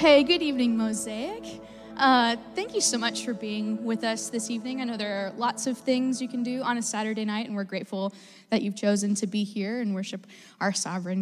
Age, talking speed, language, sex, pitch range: 10-29, 225 wpm, English, female, 205-245 Hz